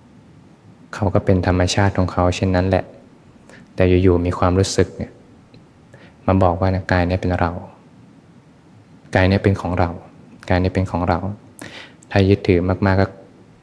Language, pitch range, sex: Thai, 85-95 Hz, male